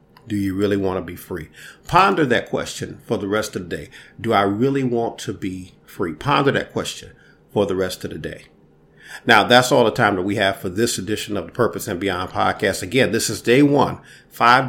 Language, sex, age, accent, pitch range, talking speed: English, male, 40-59, American, 100-120 Hz, 225 wpm